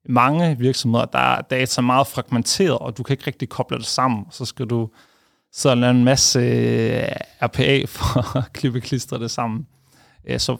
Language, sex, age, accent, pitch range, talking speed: Danish, male, 30-49, native, 120-145 Hz, 165 wpm